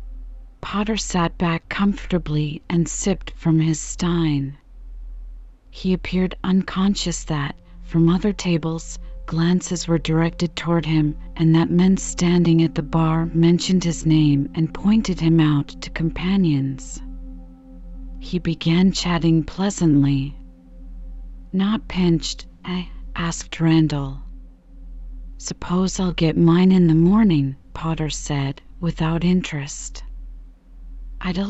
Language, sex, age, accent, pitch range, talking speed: English, female, 40-59, American, 145-185 Hz, 110 wpm